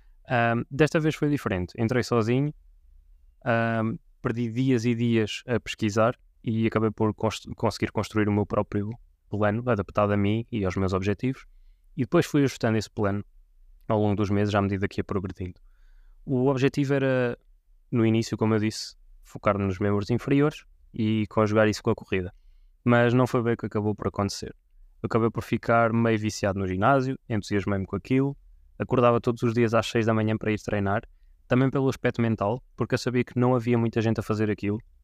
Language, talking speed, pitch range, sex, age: Portuguese, 185 wpm, 100-115 Hz, male, 20-39